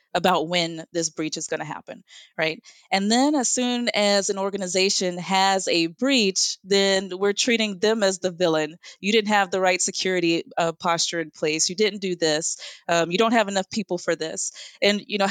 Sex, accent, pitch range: female, American, 170-200 Hz